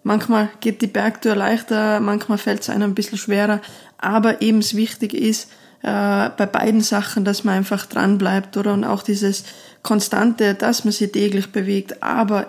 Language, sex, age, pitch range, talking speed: German, female, 20-39, 205-225 Hz, 180 wpm